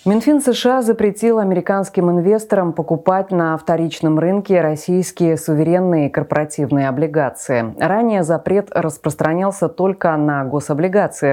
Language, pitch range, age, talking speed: Russian, 150-190 Hz, 20-39, 100 wpm